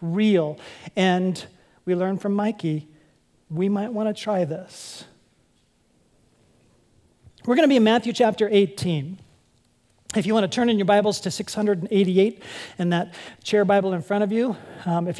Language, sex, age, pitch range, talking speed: English, male, 40-59, 175-220 Hz, 160 wpm